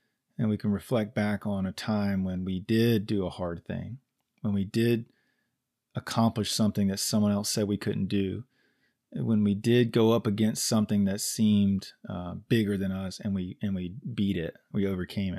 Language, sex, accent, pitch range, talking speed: English, male, American, 95-115 Hz, 185 wpm